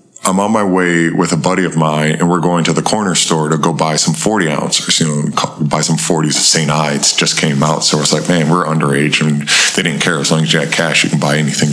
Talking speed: 275 wpm